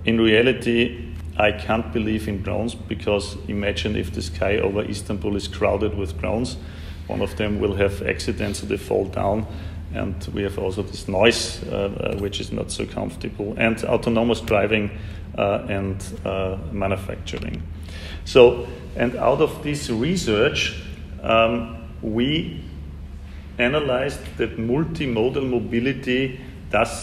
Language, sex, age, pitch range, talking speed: Turkish, male, 40-59, 95-115 Hz, 135 wpm